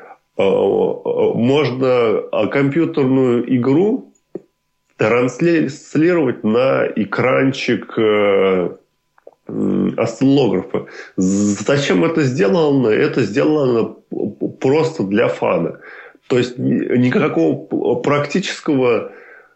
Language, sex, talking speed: Russian, male, 60 wpm